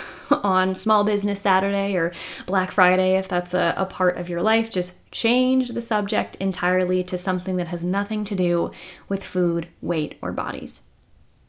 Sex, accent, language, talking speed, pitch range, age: female, American, English, 165 wpm, 180-250 Hz, 20-39